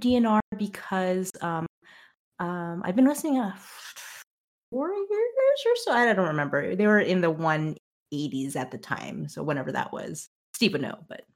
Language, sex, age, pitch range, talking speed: English, female, 30-49, 175-255 Hz, 170 wpm